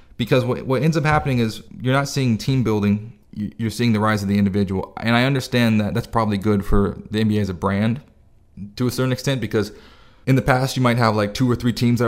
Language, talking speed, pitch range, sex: English, 245 wpm, 100-120 Hz, male